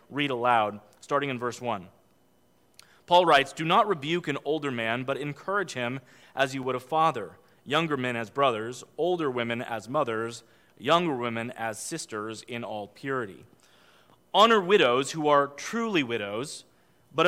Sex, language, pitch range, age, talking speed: male, English, 120-165 Hz, 30-49, 155 wpm